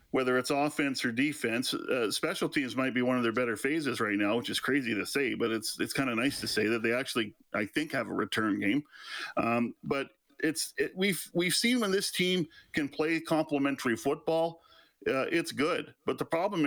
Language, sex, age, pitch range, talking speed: English, male, 40-59, 115-160 Hz, 210 wpm